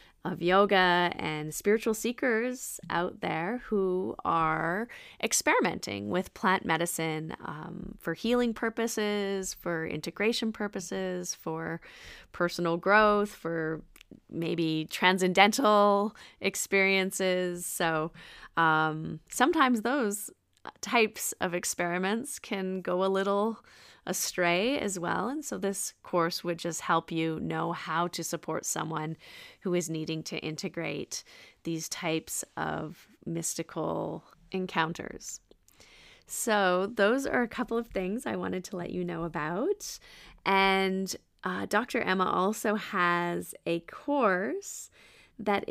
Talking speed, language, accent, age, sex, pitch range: 115 wpm, English, American, 30-49, female, 170-210 Hz